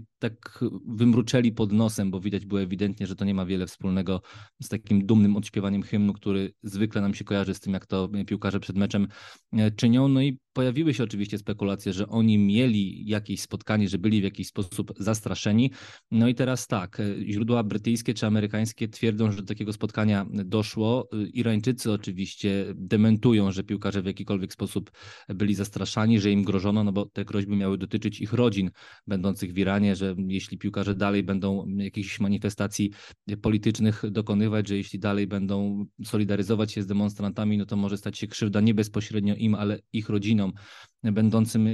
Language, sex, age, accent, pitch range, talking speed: Polish, male, 20-39, native, 100-110 Hz, 170 wpm